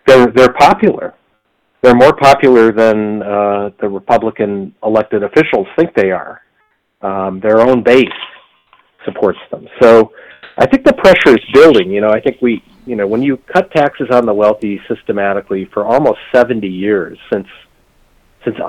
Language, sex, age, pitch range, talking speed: English, male, 40-59, 100-130 Hz, 155 wpm